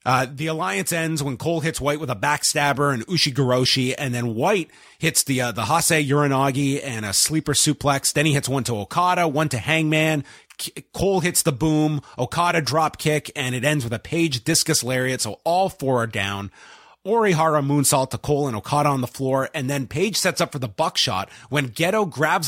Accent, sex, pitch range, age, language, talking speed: American, male, 130-165 Hz, 30-49, English, 200 wpm